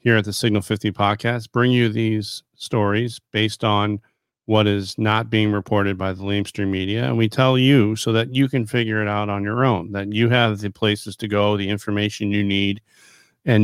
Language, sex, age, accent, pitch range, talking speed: English, male, 40-59, American, 100-115 Hz, 205 wpm